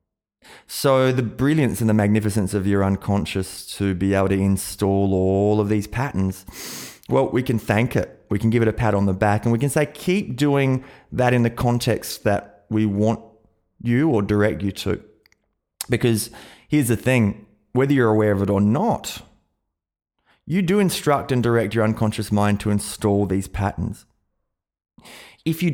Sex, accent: male, Australian